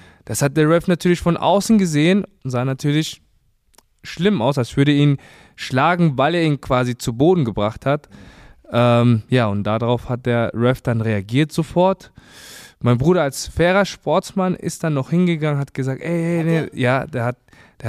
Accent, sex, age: German, male, 20-39